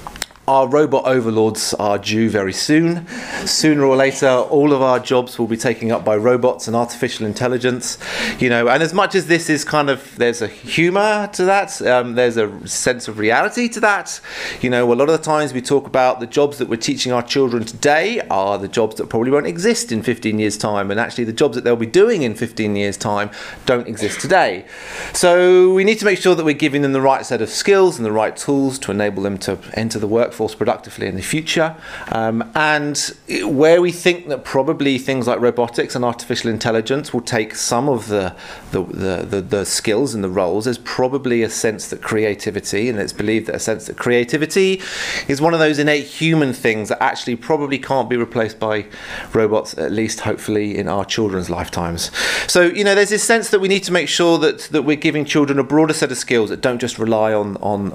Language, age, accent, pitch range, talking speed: English, 30-49, British, 110-150 Hz, 215 wpm